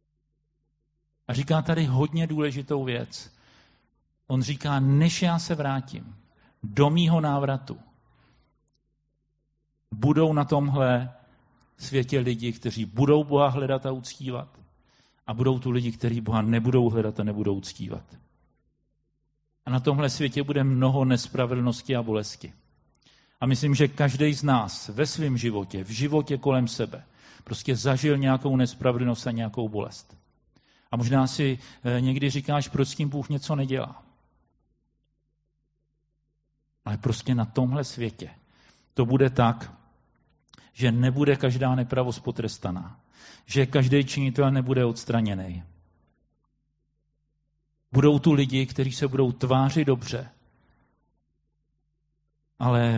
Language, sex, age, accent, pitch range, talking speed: Czech, male, 50-69, native, 120-150 Hz, 120 wpm